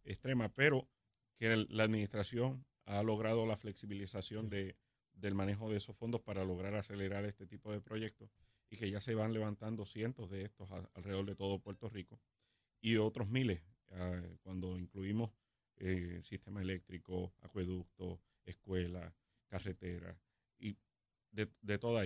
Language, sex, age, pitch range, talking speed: Spanish, male, 30-49, 95-115 Hz, 145 wpm